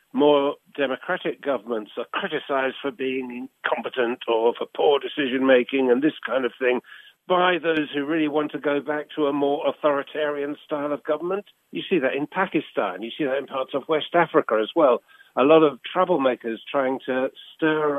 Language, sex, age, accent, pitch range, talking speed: English, male, 50-69, British, 125-155 Hz, 185 wpm